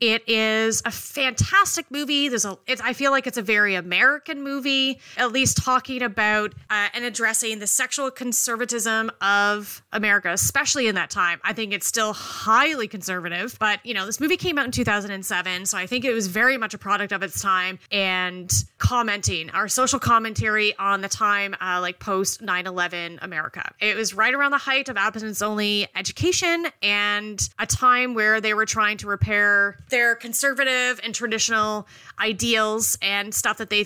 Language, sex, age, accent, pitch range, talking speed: English, female, 30-49, American, 200-250 Hz, 175 wpm